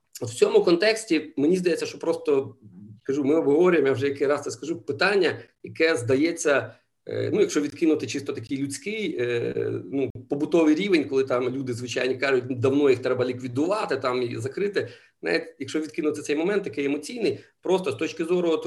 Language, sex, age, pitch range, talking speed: Ukrainian, male, 40-59, 125-175 Hz, 170 wpm